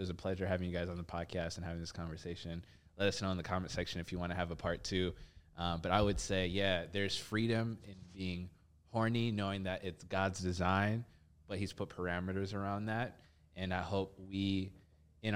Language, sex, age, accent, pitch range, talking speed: English, male, 20-39, American, 85-100 Hz, 220 wpm